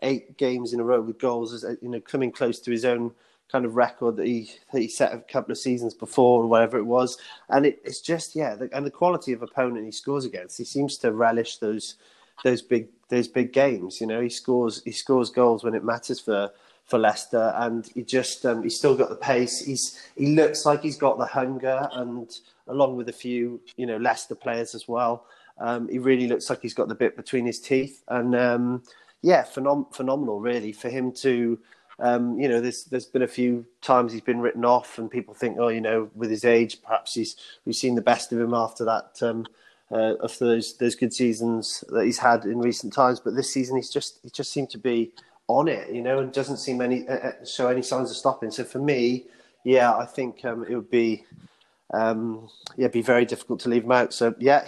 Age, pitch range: 30-49, 115-130 Hz